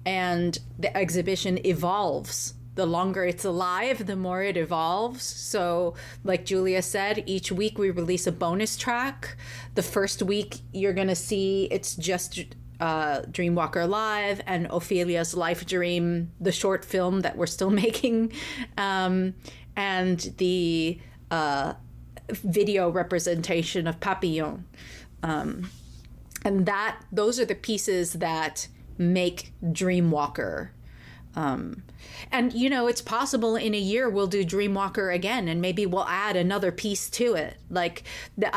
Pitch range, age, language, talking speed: 170-205 Hz, 30-49, English, 135 wpm